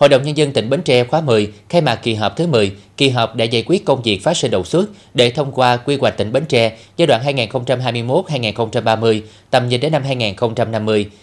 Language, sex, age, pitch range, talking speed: Vietnamese, male, 20-39, 105-135 Hz, 225 wpm